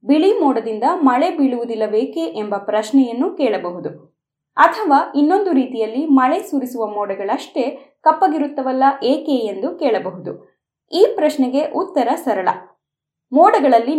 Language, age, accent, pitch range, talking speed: Kannada, 20-39, native, 225-315 Hz, 100 wpm